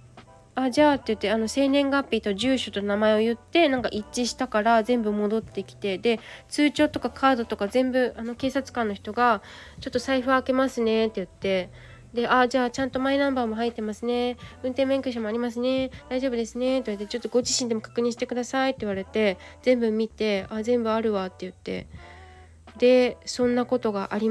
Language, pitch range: Japanese, 215-270 Hz